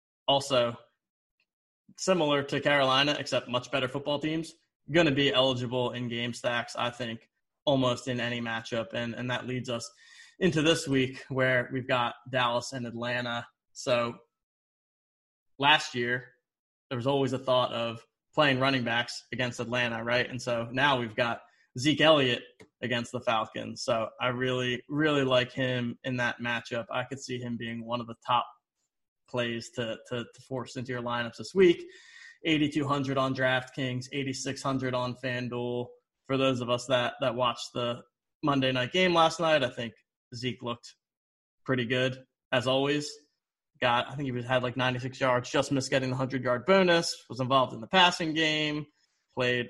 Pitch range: 120-140 Hz